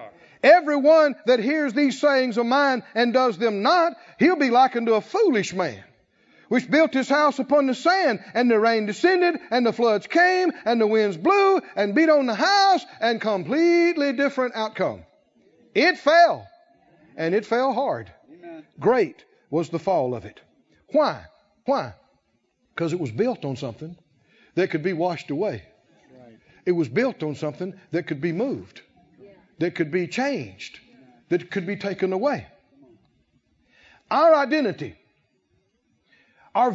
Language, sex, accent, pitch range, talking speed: English, male, American, 215-320 Hz, 150 wpm